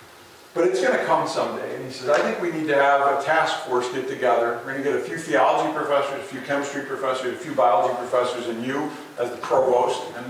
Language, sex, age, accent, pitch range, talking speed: English, male, 50-69, American, 130-175 Hz, 245 wpm